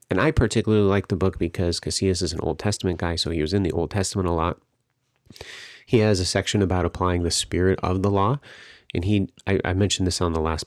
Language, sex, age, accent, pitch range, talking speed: English, male, 30-49, American, 85-100 Hz, 230 wpm